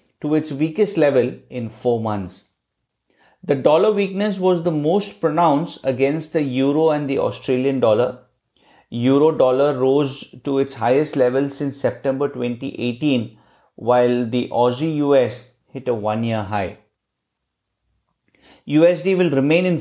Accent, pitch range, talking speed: Indian, 125-160 Hz, 125 wpm